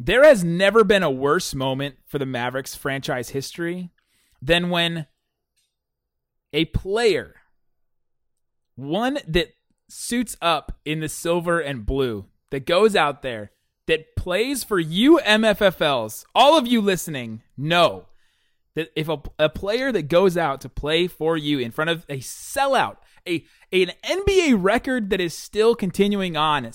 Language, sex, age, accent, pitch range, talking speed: English, male, 30-49, American, 135-195 Hz, 145 wpm